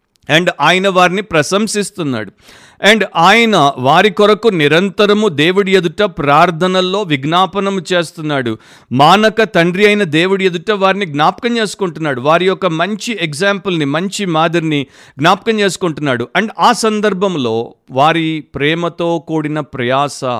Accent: native